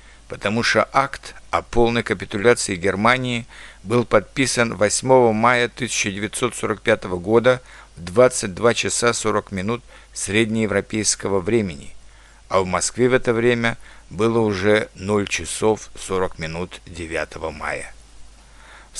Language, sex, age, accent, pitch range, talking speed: Russian, male, 60-79, native, 95-125 Hz, 110 wpm